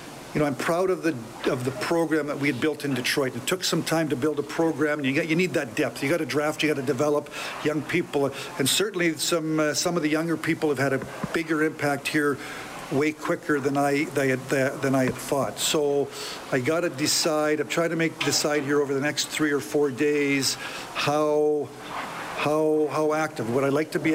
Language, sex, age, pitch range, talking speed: English, male, 50-69, 140-155 Hz, 230 wpm